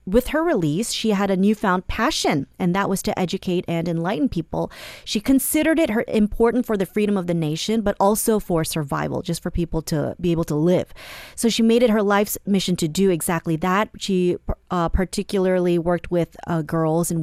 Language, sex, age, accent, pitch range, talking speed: English, female, 30-49, American, 170-220 Hz, 200 wpm